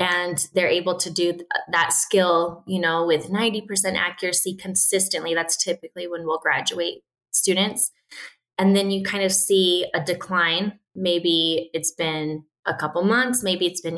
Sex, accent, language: female, American, English